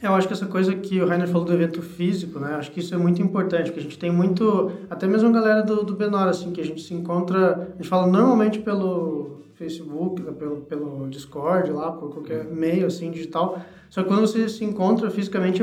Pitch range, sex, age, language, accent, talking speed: 170-195 Hz, male, 20-39, Portuguese, Brazilian, 230 wpm